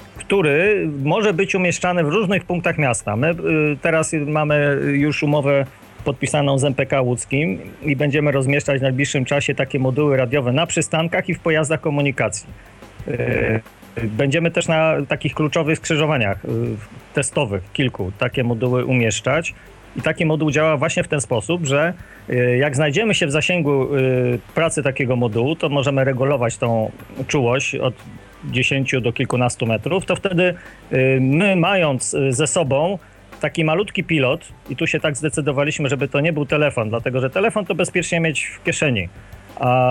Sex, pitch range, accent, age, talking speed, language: male, 130-160 Hz, native, 40-59, 145 wpm, Polish